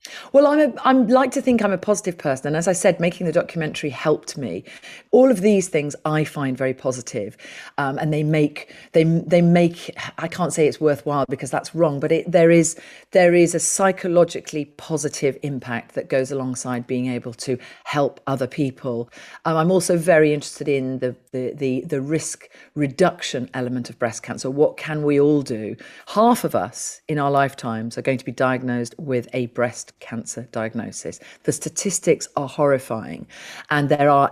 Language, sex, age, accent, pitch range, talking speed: English, female, 40-59, British, 125-160 Hz, 185 wpm